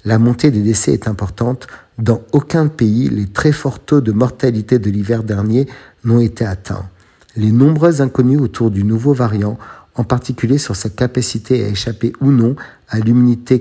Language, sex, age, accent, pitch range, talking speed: Italian, male, 50-69, French, 110-130 Hz, 170 wpm